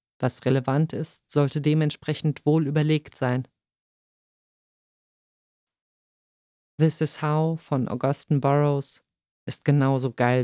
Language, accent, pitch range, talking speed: German, German, 130-150 Hz, 100 wpm